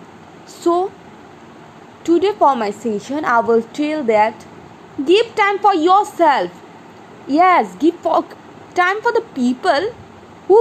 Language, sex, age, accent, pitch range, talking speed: English, female, 20-39, Indian, 275-365 Hz, 115 wpm